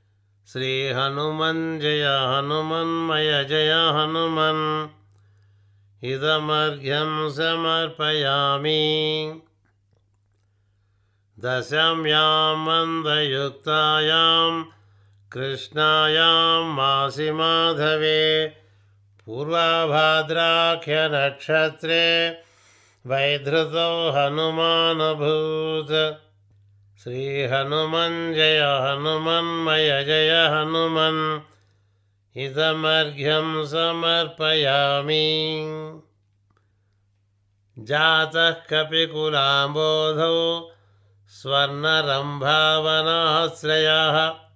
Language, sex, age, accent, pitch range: Telugu, male, 60-79, native, 130-160 Hz